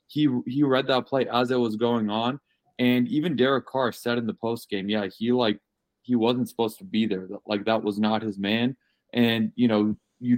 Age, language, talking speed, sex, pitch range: 20-39, English, 220 wpm, male, 105-125 Hz